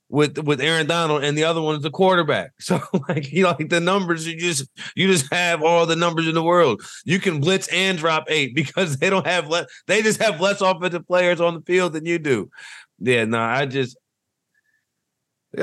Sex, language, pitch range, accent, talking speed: male, English, 100-160 Hz, American, 220 wpm